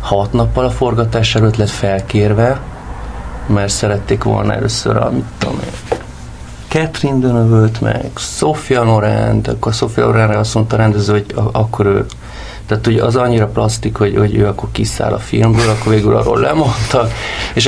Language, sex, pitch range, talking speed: Hungarian, male, 95-115 Hz, 155 wpm